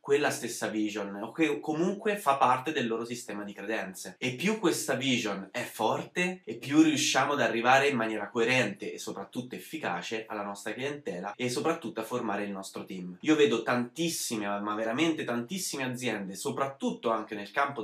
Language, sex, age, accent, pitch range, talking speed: Italian, male, 20-39, native, 110-135 Hz, 170 wpm